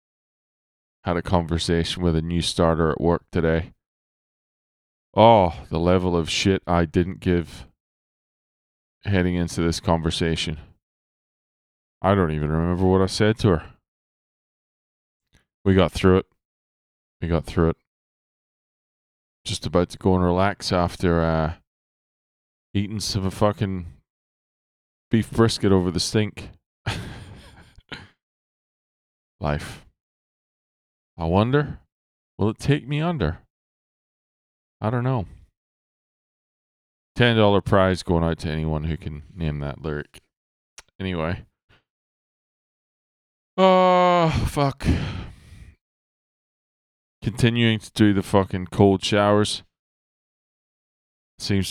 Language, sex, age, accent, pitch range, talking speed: English, male, 20-39, American, 80-100 Hz, 105 wpm